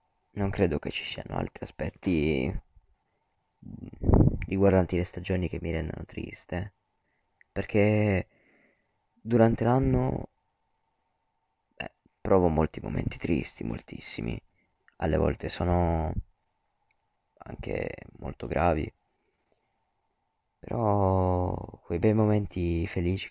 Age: 20-39